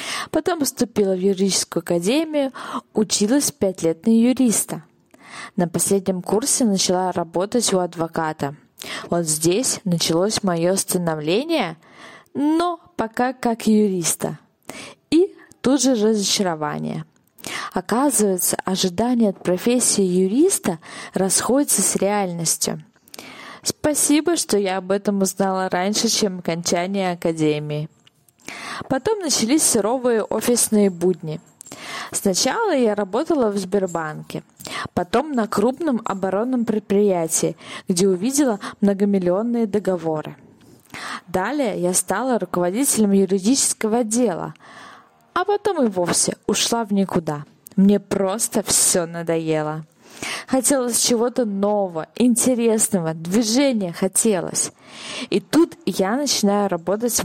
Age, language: 20-39, Russian